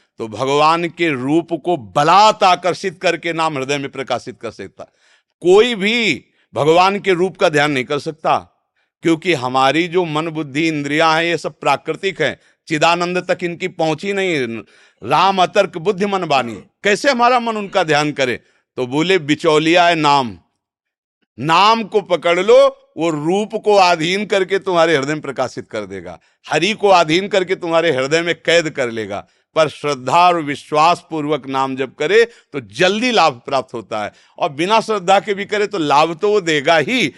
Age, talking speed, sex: 50-69, 175 wpm, male